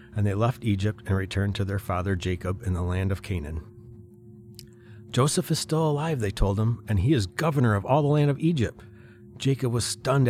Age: 30-49